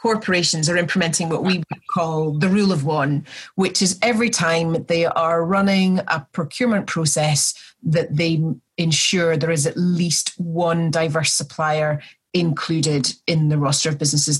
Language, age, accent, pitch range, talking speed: English, 30-49, British, 155-195 Hz, 155 wpm